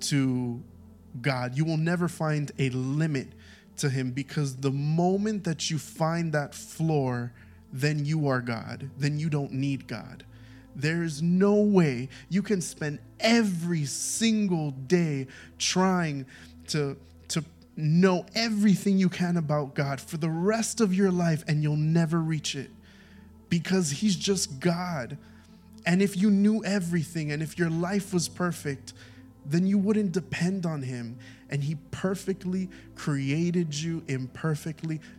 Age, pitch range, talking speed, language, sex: 20-39, 135-170 Hz, 145 wpm, English, male